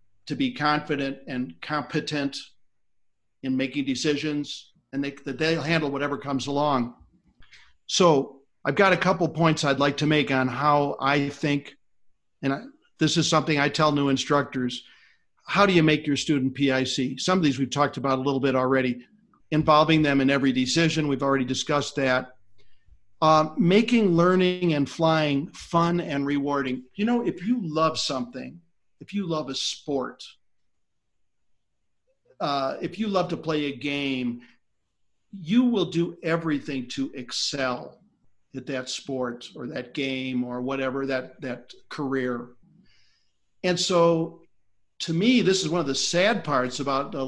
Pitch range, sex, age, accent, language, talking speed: 130-160 Hz, male, 50-69, American, English, 150 wpm